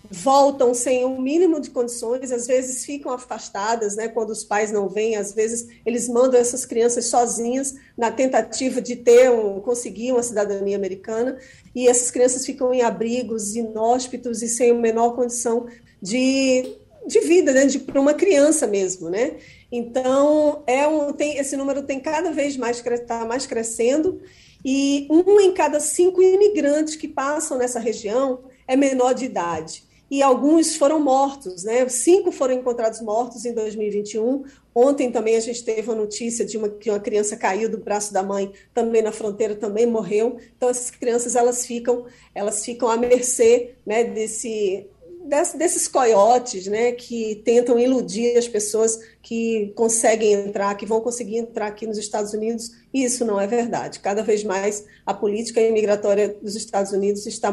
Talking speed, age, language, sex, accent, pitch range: 165 wpm, 40-59, Portuguese, female, Brazilian, 220-260 Hz